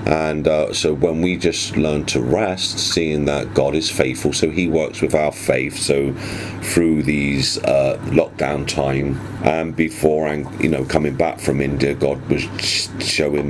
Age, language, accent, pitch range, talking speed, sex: 40-59, English, British, 70-80 Hz, 170 wpm, male